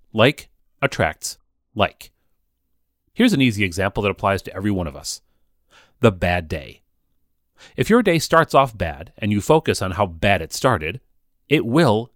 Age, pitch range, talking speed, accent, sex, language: 40-59, 80-115 Hz, 165 wpm, American, male, English